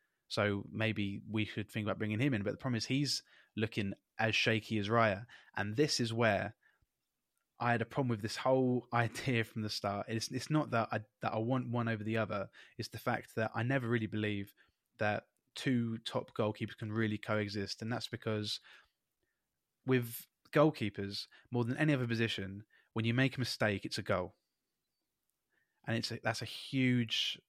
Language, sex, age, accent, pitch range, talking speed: English, male, 20-39, British, 105-120 Hz, 185 wpm